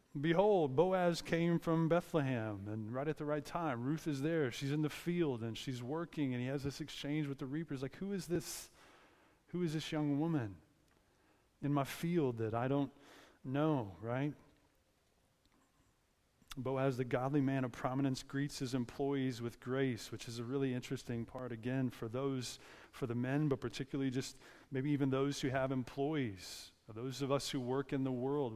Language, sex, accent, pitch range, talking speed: English, male, American, 115-145 Hz, 180 wpm